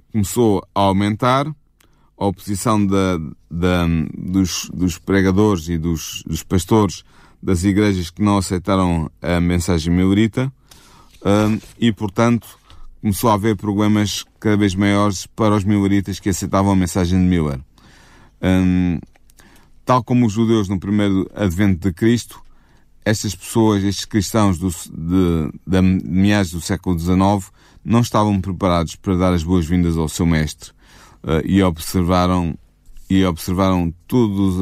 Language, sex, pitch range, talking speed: Portuguese, male, 90-110 Hz, 125 wpm